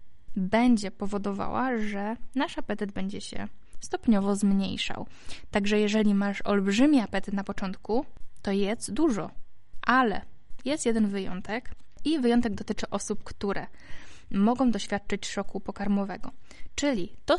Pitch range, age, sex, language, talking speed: 200-230 Hz, 20-39, female, Polish, 115 wpm